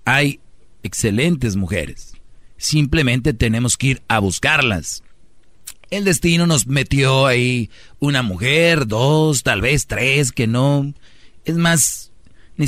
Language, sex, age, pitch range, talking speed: Spanish, male, 40-59, 110-145 Hz, 120 wpm